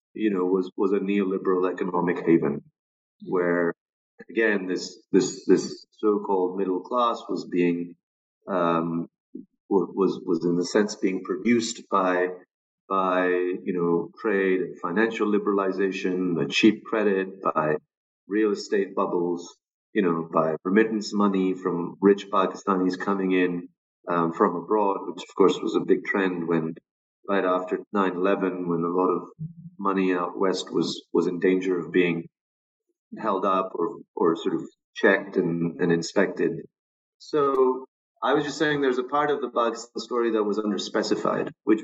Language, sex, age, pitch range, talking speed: English, male, 40-59, 90-110 Hz, 150 wpm